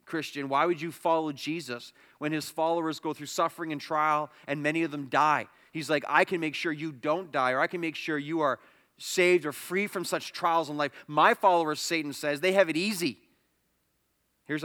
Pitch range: 120-160 Hz